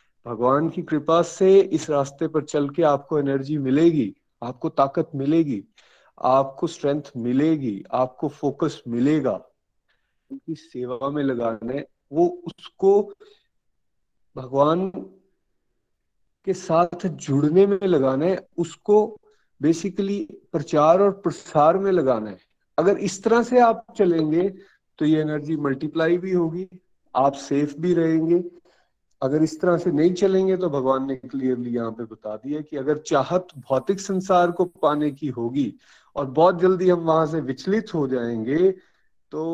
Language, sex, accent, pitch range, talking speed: Hindi, male, native, 130-175 Hz, 135 wpm